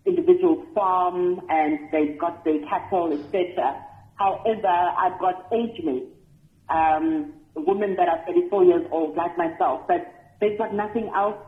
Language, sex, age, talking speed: English, female, 40-59, 140 wpm